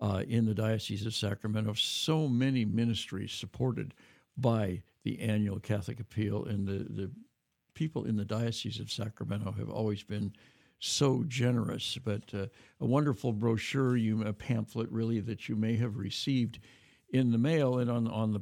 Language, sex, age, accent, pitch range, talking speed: English, male, 60-79, American, 105-130 Hz, 165 wpm